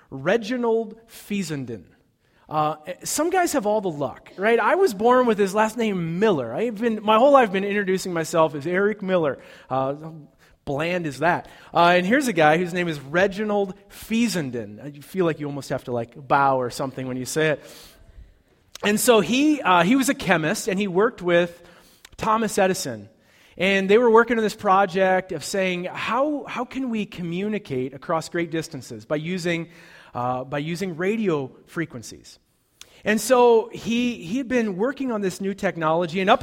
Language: English